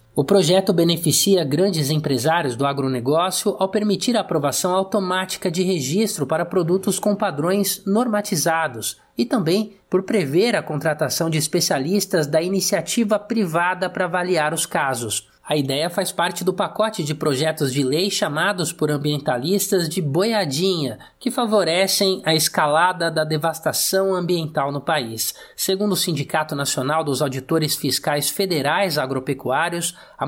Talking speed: 135 wpm